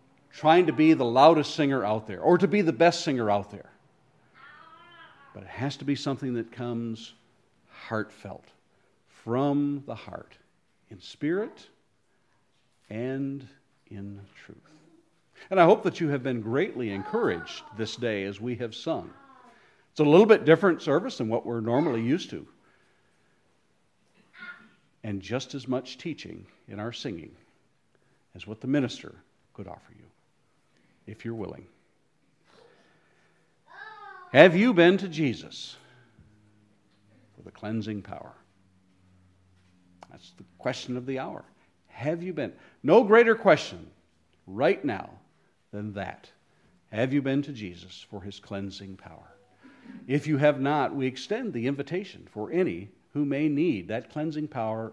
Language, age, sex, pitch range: English, 50-69, male, 105-150 Hz